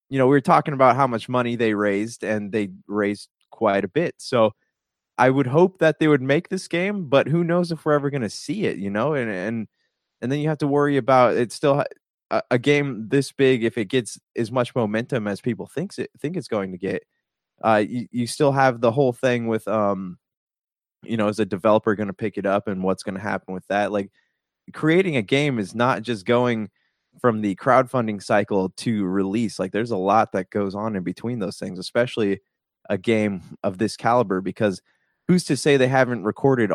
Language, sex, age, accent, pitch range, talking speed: English, male, 20-39, American, 100-130 Hz, 220 wpm